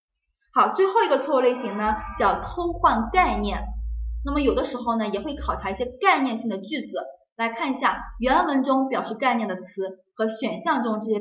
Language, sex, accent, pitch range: Chinese, female, native, 200-265 Hz